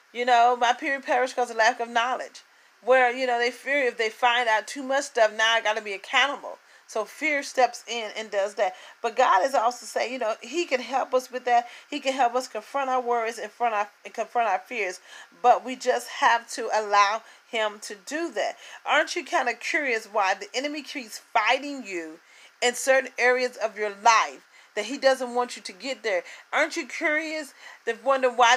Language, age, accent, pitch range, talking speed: English, 40-59, American, 225-260 Hz, 210 wpm